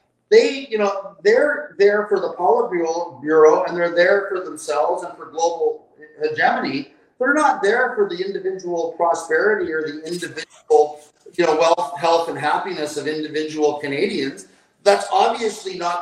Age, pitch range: 40-59, 155-195 Hz